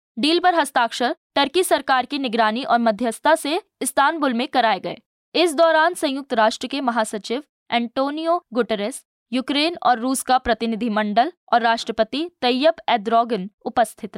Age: 20-39